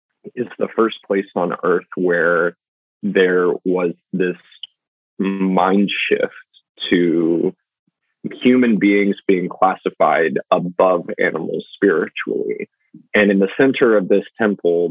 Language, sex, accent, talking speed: English, male, American, 110 wpm